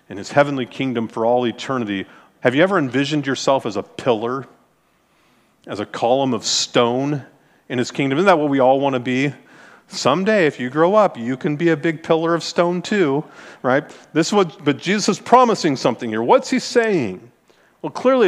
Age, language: 40-59, English